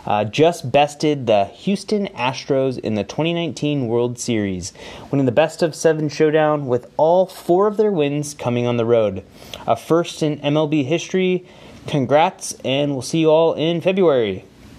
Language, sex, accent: English, male, American